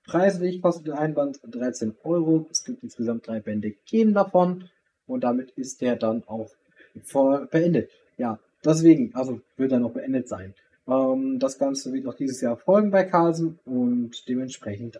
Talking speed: 165 wpm